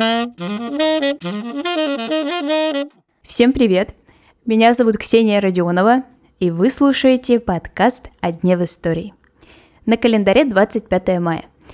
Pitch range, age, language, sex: 175-245 Hz, 20-39, Russian, female